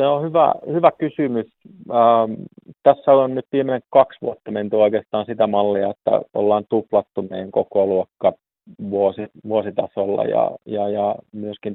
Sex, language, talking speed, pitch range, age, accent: male, Finnish, 140 wpm, 100-115 Hz, 30-49, native